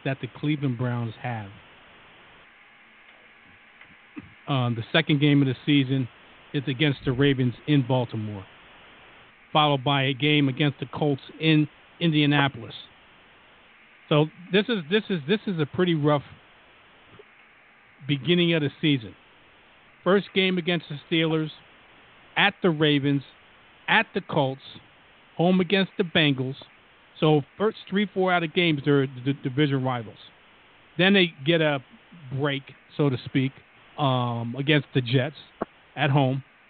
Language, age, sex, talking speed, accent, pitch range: English, 50-69, male, 130 wpm, American, 135-170 Hz